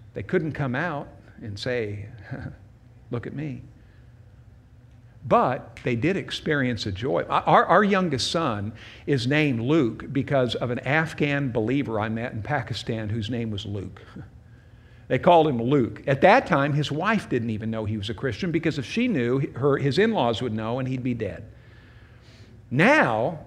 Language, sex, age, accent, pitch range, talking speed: English, male, 50-69, American, 115-155 Hz, 165 wpm